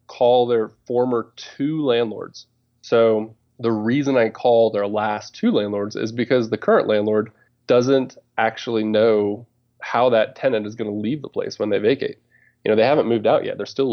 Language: English